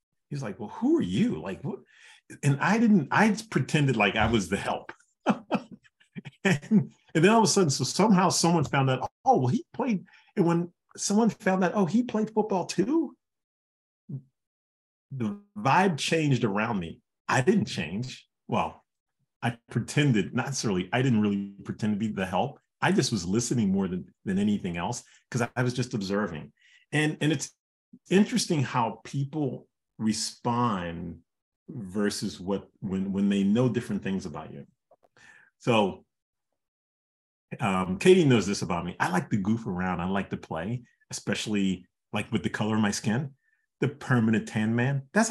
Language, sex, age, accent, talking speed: English, male, 40-59, American, 165 wpm